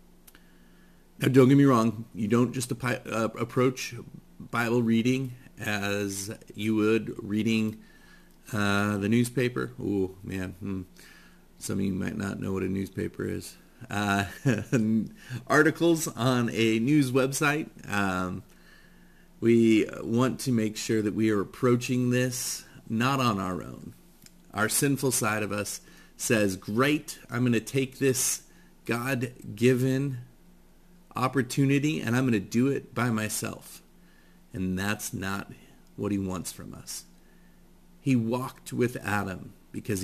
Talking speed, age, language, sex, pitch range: 125 wpm, 40-59, English, male, 100-125 Hz